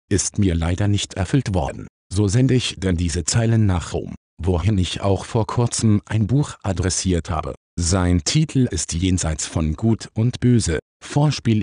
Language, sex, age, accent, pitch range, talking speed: German, male, 50-69, German, 90-115 Hz, 165 wpm